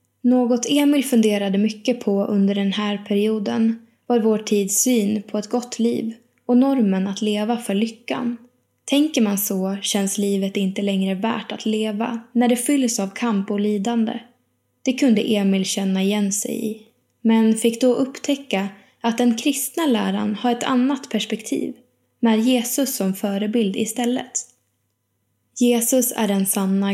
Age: 10-29